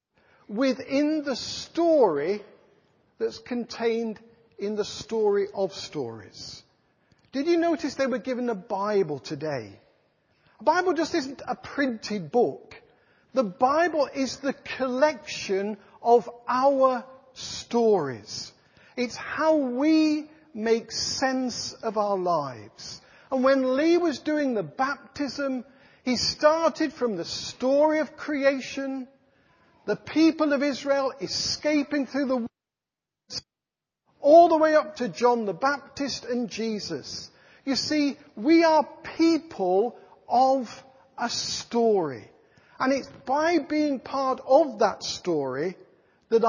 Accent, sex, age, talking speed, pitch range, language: British, male, 50-69, 115 wpm, 225-295 Hz, English